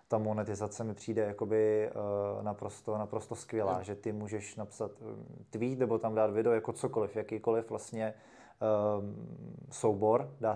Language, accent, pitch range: Czech, native, 105-115 Hz